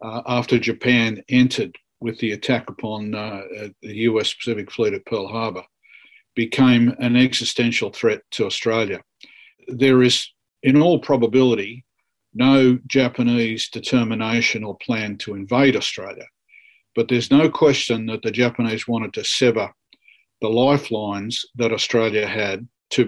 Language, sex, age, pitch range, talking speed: English, male, 50-69, 110-125 Hz, 135 wpm